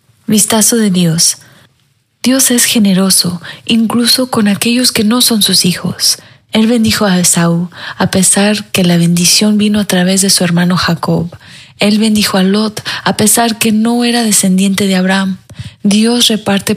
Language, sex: Spanish, female